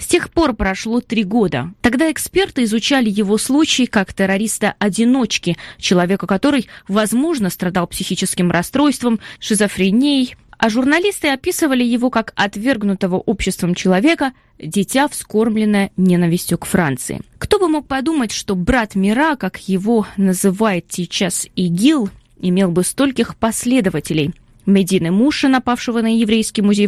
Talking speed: 125 wpm